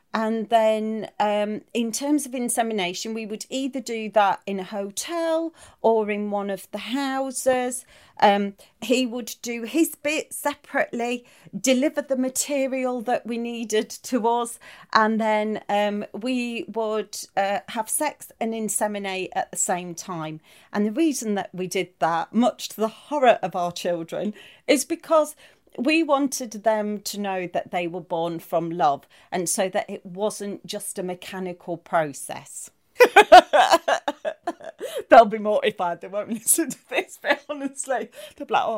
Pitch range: 190-260 Hz